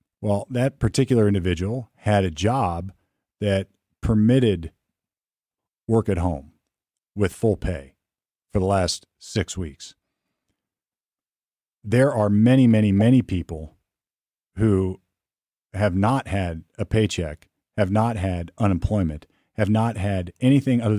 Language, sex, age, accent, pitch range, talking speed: English, male, 40-59, American, 90-110 Hz, 115 wpm